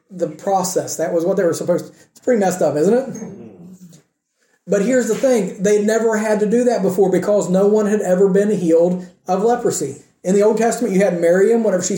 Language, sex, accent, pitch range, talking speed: English, male, American, 175-225 Hz, 220 wpm